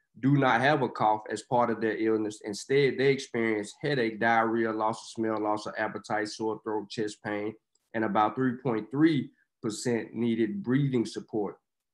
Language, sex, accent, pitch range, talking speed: English, male, American, 110-140 Hz, 155 wpm